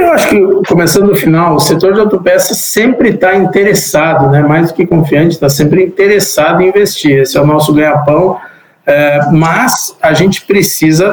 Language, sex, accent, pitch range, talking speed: Portuguese, male, Brazilian, 145-190 Hz, 180 wpm